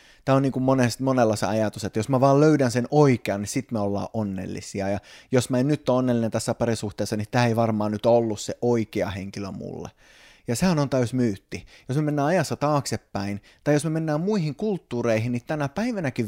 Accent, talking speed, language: native, 210 wpm, Finnish